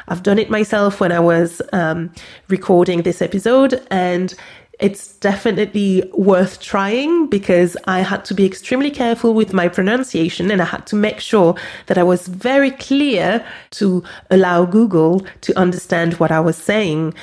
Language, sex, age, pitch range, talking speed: English, female, 30-49, 180-230 Hz, 160 wpm